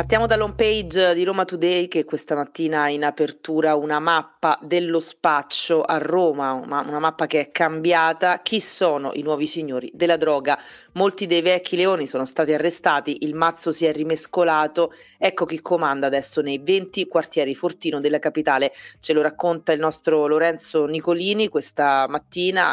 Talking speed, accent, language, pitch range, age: 165 wpm, native, Italian, 145-175 Hz, 30-49